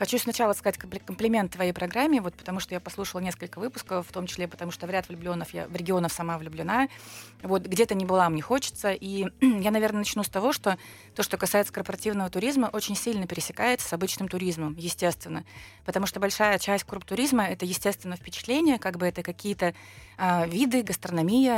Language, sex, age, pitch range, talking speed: Russian, female, 30-49, 175-215 Hz, 190 wpm